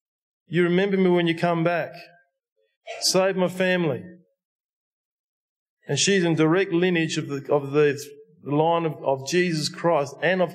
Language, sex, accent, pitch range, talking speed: English, male, Australian, 150-185 Hz, 150 wpm